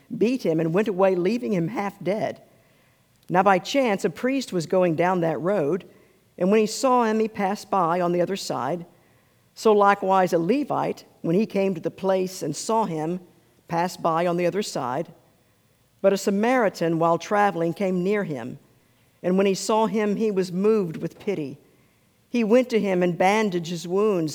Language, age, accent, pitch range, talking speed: English, 50-69, American, 165-205 Hz, 185 wpm